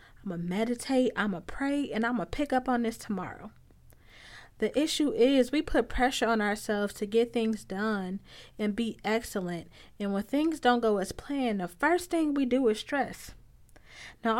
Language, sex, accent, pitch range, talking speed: English, female, American, 210-270 Hz, 185 wpm